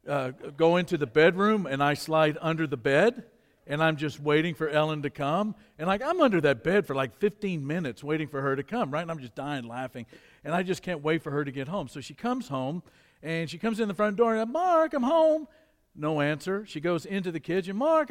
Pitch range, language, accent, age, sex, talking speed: 155-230 Hz, English, American, 50-69, male, 260 wpm